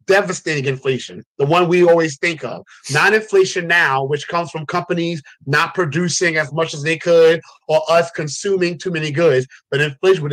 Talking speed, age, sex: 180 wpm, 30-49, male